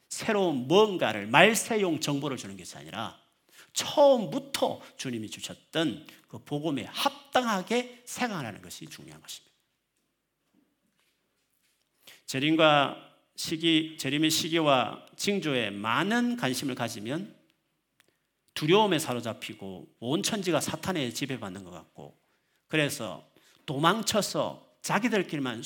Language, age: Korean, 40-59